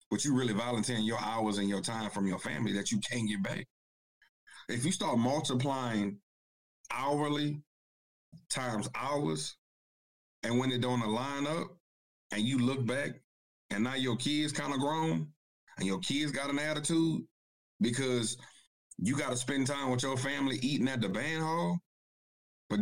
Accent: American